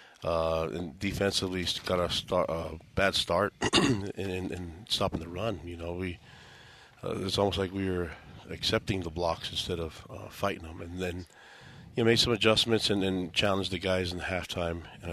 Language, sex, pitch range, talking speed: English, male, 85-100 Hz, 200 wpm